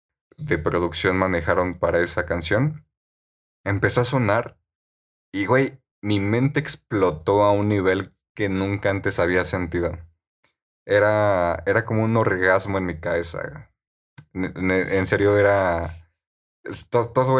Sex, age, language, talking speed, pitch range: male, 20-39, Spanish, 115 wpm, 85-110 Hz